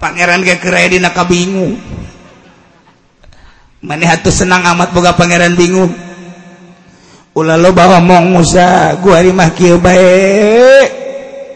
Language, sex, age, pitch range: Indonesian, male, 50-69, 165-200 Hz